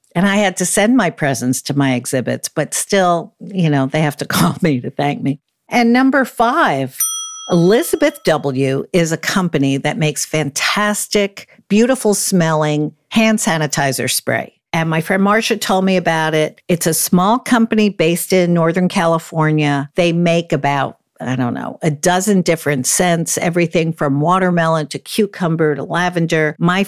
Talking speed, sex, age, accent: 160 wpm, female, 50-69, American